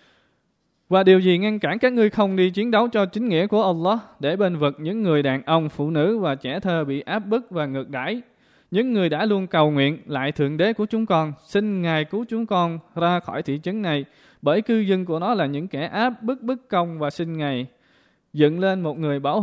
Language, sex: Vietnamese, male